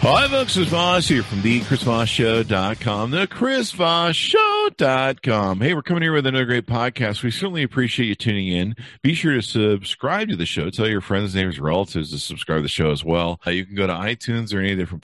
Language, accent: English, American